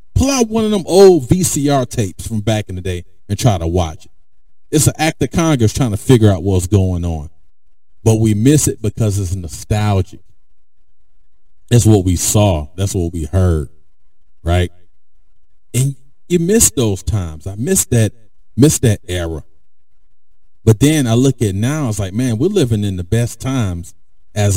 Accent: American